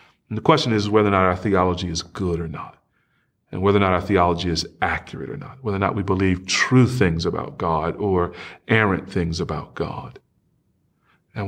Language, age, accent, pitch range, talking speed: English, 40-59, American, 95-135 Hz, 200 wpm